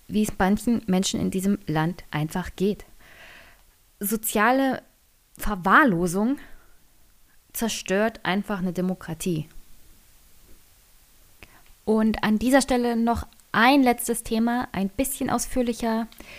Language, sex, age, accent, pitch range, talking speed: German, female, 20-39, German, 190-235 Hz, 95 wpm